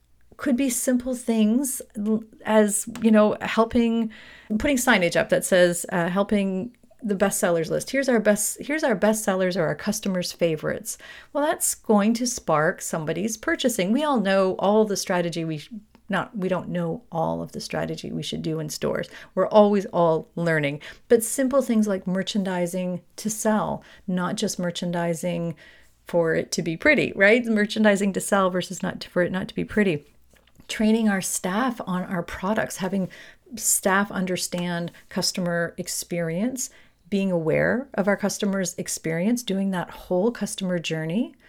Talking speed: 160 wpm